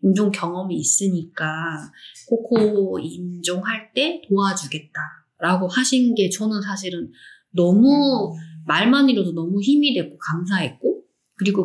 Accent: native